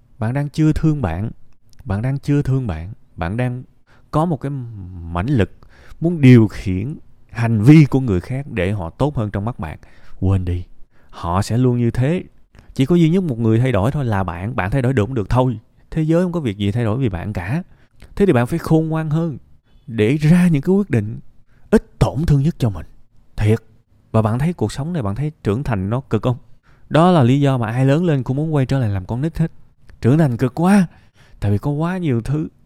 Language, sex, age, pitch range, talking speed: Vietnamese, male, 20-39, 110-145 Hz, 235 wpm